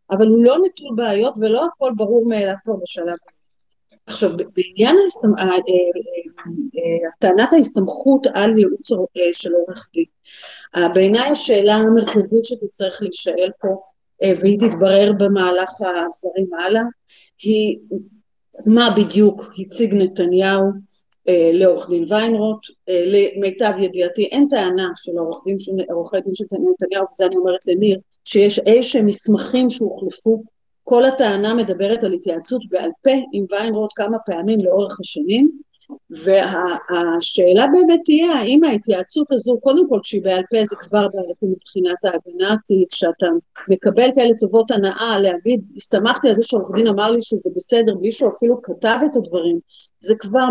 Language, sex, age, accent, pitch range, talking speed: Hebrew, female, 40-59, native, 185-230 Hz, 135 wpm